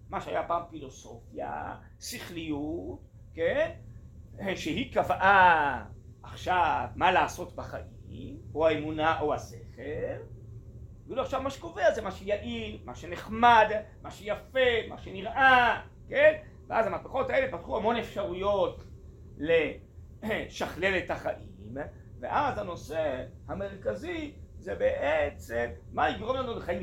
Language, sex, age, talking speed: Hebrew, male, 40-59, 105 wpm